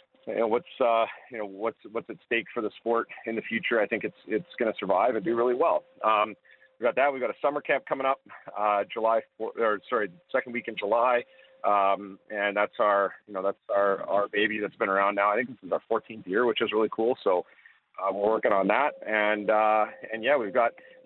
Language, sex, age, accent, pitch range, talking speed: English, male, 40-59, American, 95-120 Hz, 245 wpm